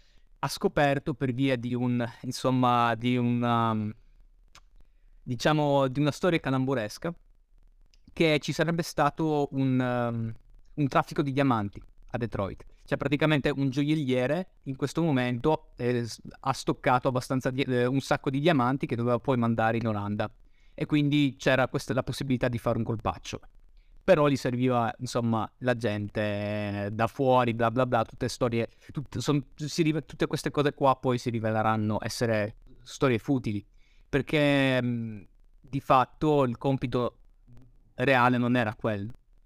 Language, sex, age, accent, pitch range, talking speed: Italian, male, 20-39, native, 115-140 Hz, 145 wpm